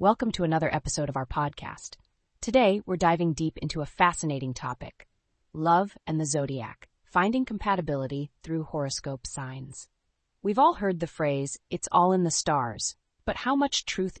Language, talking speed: English, 160 wpm